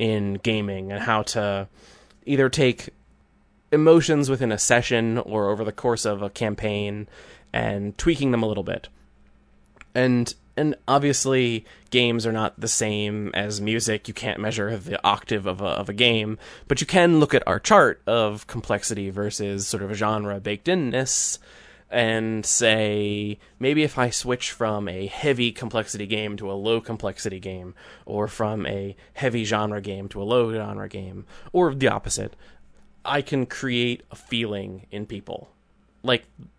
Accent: American